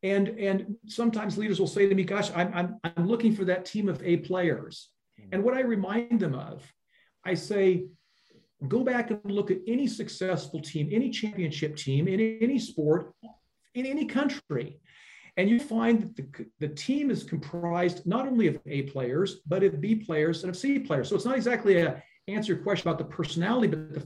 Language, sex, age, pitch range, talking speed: English, male, 40-59, 170-225 Hz, 195 wpm